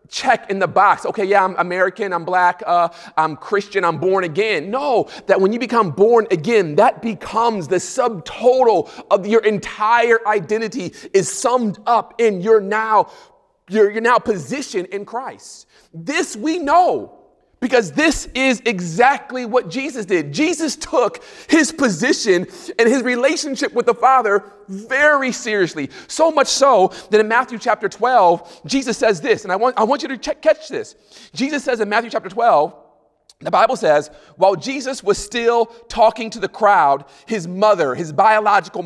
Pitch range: 190-250 Hz